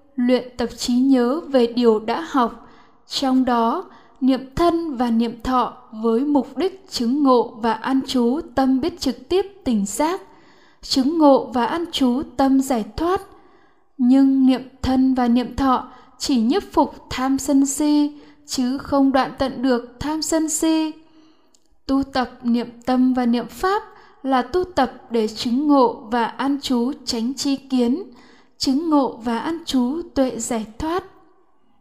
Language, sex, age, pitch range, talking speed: Vietnamese, female, 10-29, 245-305 Hz, 160 wpm